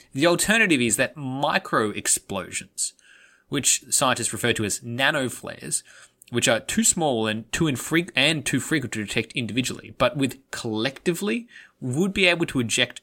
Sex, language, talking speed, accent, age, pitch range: male, English, 140 wpm, Australian, 20-39, 110-150 Hz